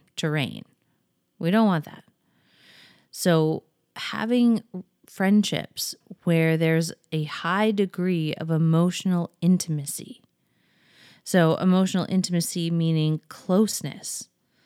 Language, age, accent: English, 30-49, American